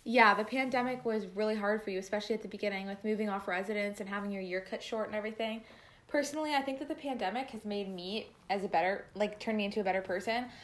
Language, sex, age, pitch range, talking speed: English, female, 20-39, 190-220 Hz, 245 wpm